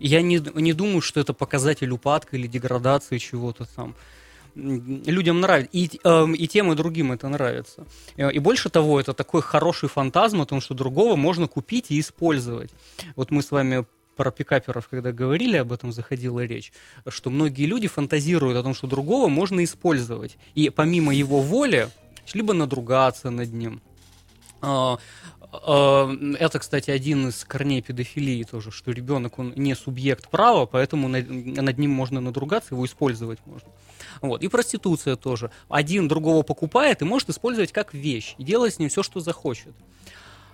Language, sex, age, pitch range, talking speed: Russian, male, 20-39, 130-165 Hz, 160 wpm